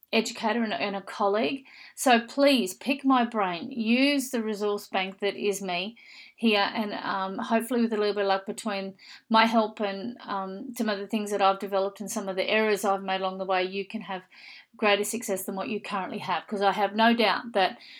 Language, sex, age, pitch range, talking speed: English, female, 40-59, 195-235 Hz, 215 wpm